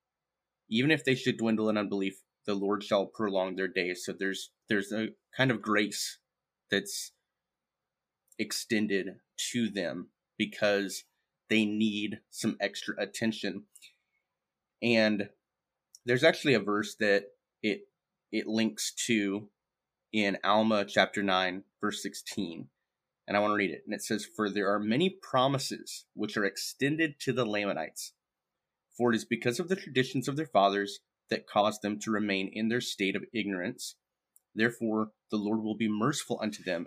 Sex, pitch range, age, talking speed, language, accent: male, 105-130 Hz, 30-49, 155 wpm, English, American